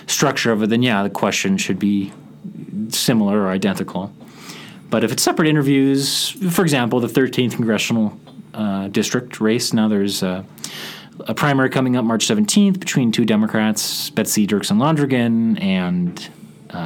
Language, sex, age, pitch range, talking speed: English, male, 30-49, 110-160 Hz, 145 wpm